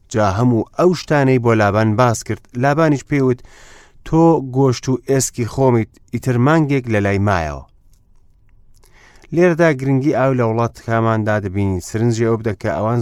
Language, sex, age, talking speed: English, male, 30-49, 145 wpm